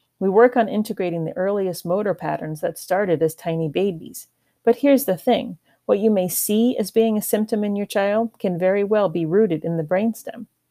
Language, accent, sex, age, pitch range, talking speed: English, American, female, 40-59, 170-225 Hz, 200 wpm